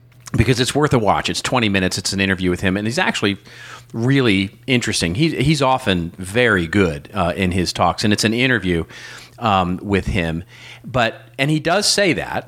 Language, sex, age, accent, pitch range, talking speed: English, male, 40-59, American, 95-120 Hz, 190 wpm